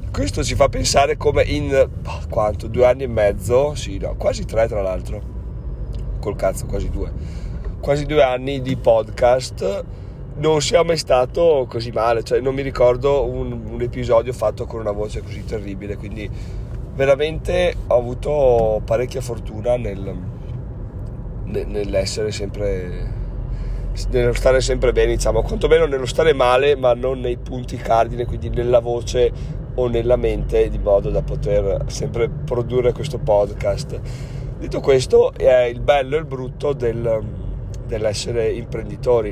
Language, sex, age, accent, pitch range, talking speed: Italian, male, 30-49, native, 110-130 Hz, 145 wpm